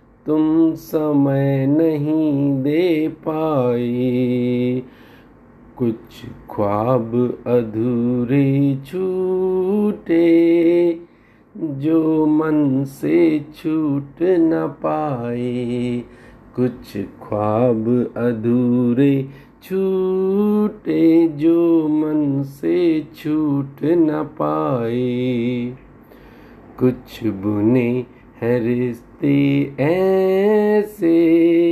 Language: Hindi